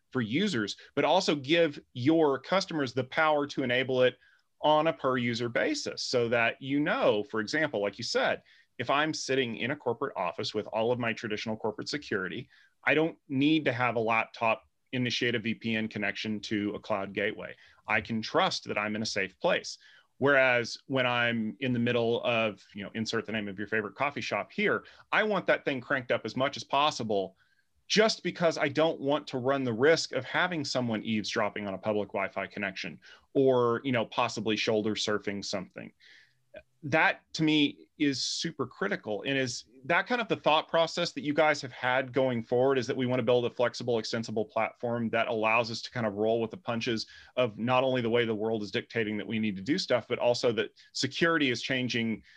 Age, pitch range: 30-49, 110-140 Hz